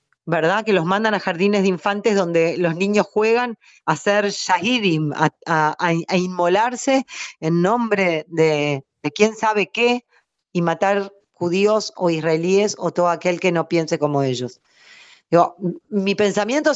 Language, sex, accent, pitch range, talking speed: Spanish, female, Argentinian, 165-215 Hz, 150 wpm